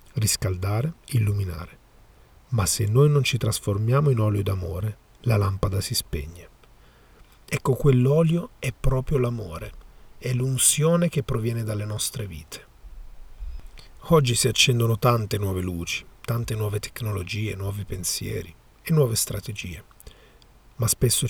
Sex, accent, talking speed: male, native, 120 wpm